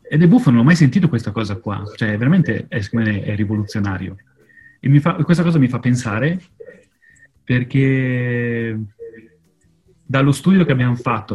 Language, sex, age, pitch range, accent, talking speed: Italian, male, 30-49, 110-145 Hz, native, 150 wpm